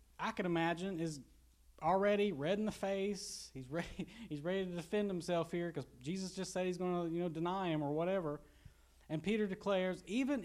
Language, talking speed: English, 195 wpm